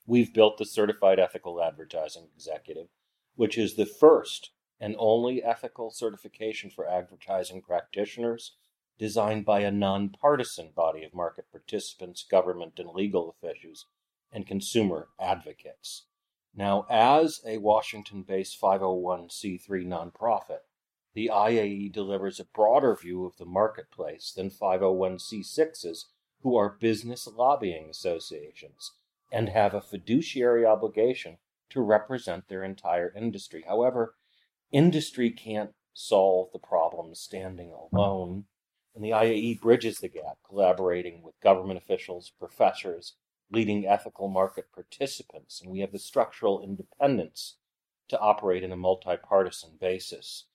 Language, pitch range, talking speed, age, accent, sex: English, 95-120 Hz, 120 wpm, 40-59, American, male